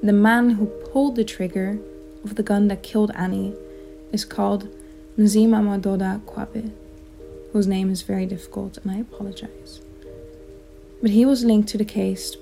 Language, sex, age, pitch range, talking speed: English, female, 20-39, 180-215 Hz, 155 wpm